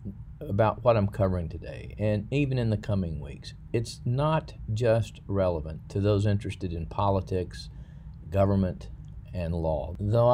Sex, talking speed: male, 140 wpm